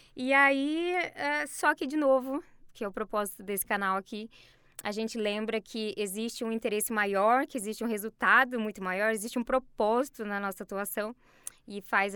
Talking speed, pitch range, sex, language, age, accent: 175 wpm, 210-260 Hz, female, Portuguese, 20-39, Brazilian